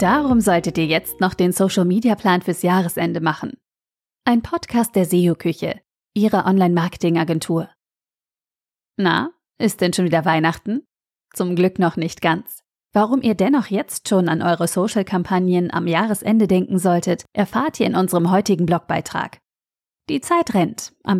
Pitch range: 175-210 Hz